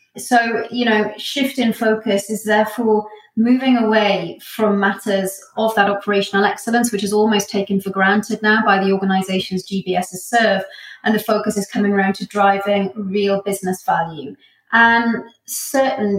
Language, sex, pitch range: English, female, 195-215 Hz